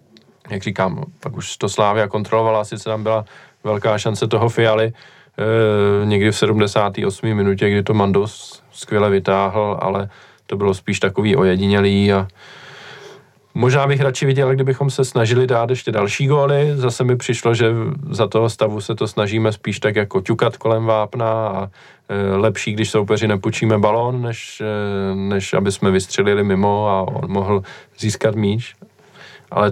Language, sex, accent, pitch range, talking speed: Czech, male, native, 100-115 Hz, 160 wpm